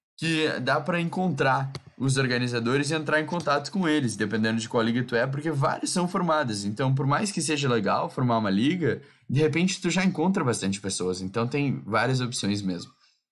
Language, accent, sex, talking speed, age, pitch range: Portuguese, Brazilian, male, 195 wpm, 10-29, 100-135 Hz